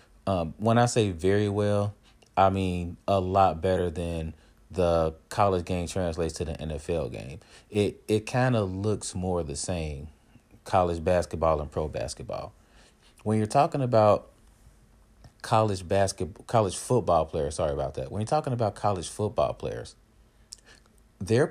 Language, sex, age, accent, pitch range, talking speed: English, male, 30-49, American, 90-110 Hz, 150 wpm